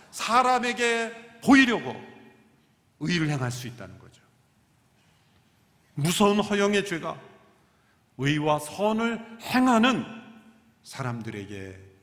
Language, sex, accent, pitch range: Korean, male, native, 130-205 Hz